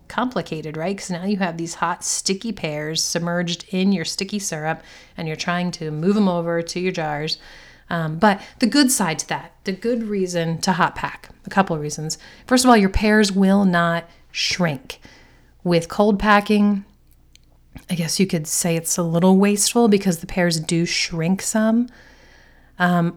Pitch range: 165-205 Hz